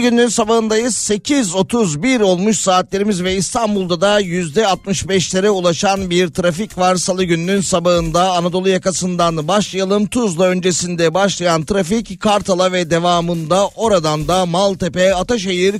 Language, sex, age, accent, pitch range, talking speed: Turkish, male, 40-59, native, 170-200 Hz, 115 wpm